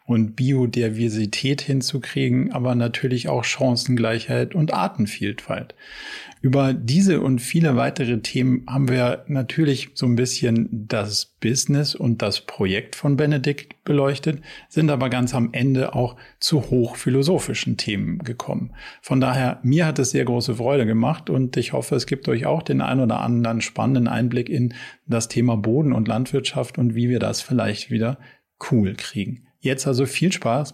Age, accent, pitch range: 40-59, German, 115-145 Hz